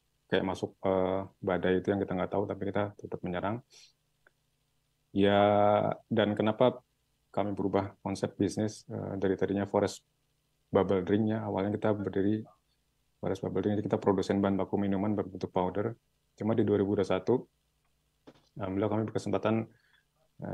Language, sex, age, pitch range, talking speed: Indonesian, male, 20-39, 95-110 Hz, 135 wpm